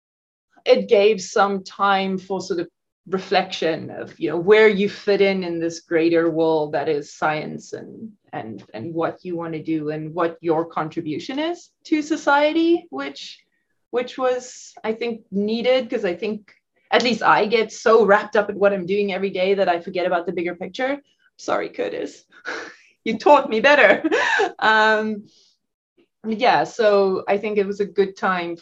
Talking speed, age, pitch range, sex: 170 wpm, 20-39, 175-255 Hz, female